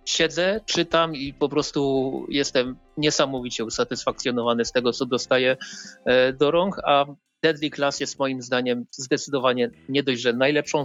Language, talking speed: Polish, 140 wpm